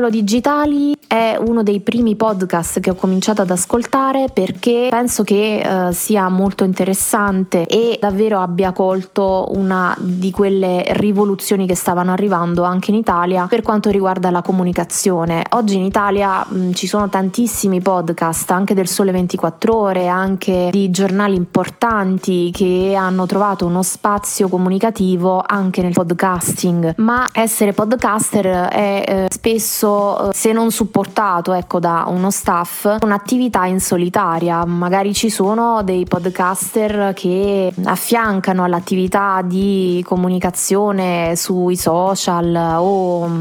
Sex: female